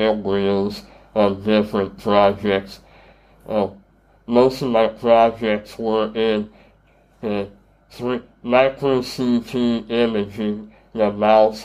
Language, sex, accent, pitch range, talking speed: English, male, American, 105-120 Hz, 90 wpm